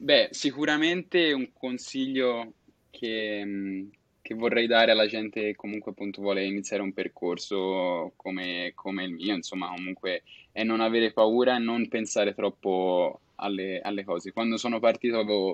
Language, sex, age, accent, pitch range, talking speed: Italian, male, 10-29, native, 100-115 Hz, 145 wpm